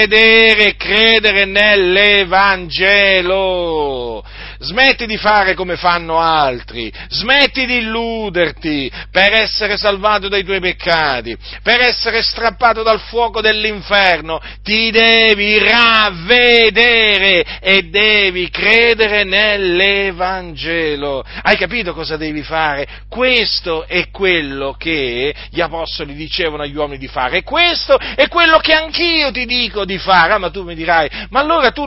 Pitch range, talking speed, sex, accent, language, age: 165-220 Hz, 120 wpm, male, native, Italian, 50-69